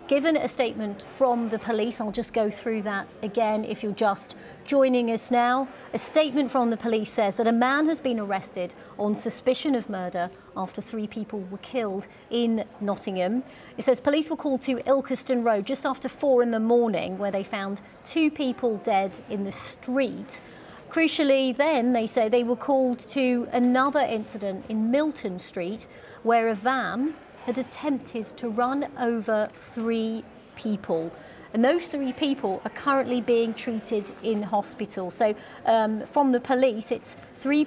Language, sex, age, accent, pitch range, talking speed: English, female, 40-59, British, 210-260 Hz, 170 wpm